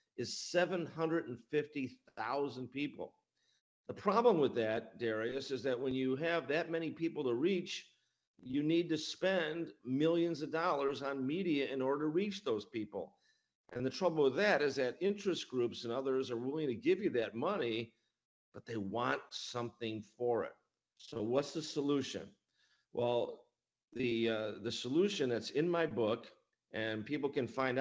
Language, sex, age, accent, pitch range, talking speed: English, male, 50-69, American, 120-160 Hz, 160 wpm